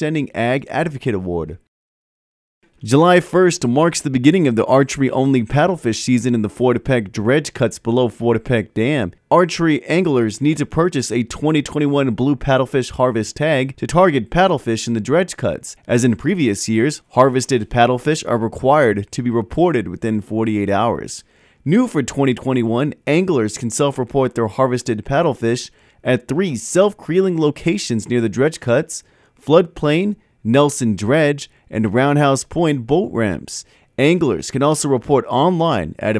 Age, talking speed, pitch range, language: 30-49, 140 wpm, 115-155 Hz, English